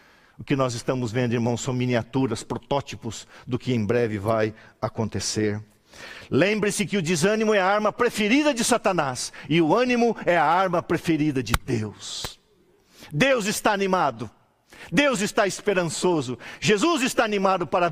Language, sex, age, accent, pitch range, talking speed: Portuguese, male, 50-69, Brazilian, 130-205 Hz, 145 wpm